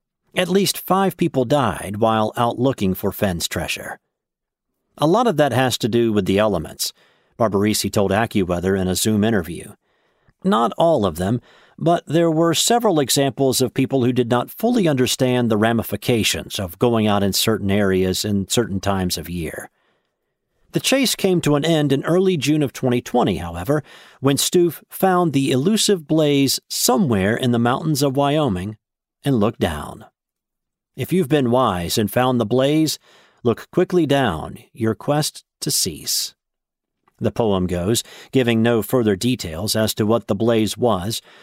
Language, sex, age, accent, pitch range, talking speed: English, male, 50-69, American, 105-145 Hz, 160 wpm